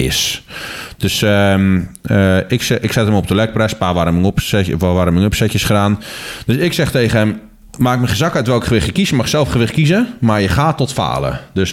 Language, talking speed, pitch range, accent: Dutch, 210 wpm, 90-125 Hz, Dutch